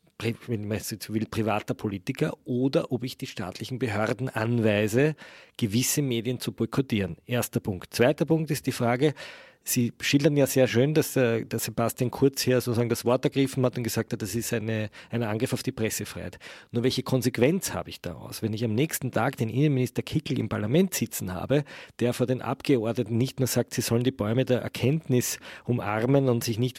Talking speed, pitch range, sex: 190 wpm, 115-145 Hz, male